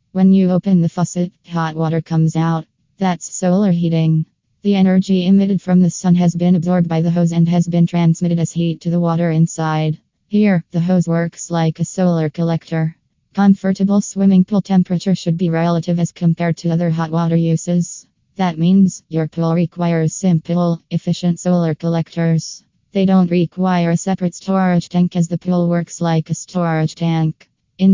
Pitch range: 165-180 Hz